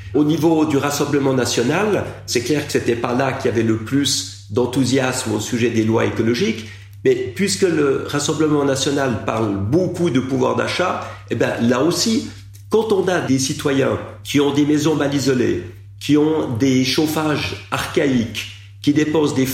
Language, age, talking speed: French, 50-69, 170 wpm